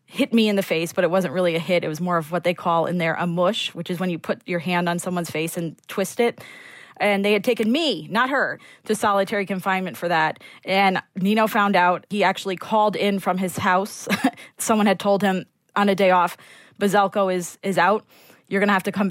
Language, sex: English, female